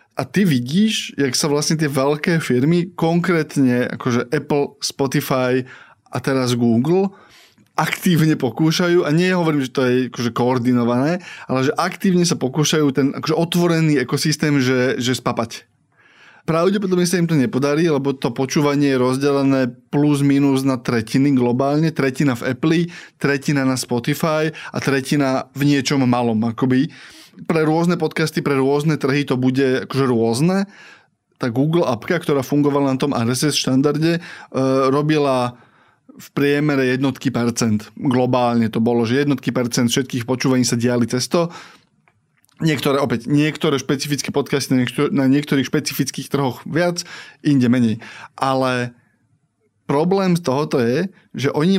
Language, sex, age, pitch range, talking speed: Slovak, male, 20-39, 130-160 Hz, 140 wpm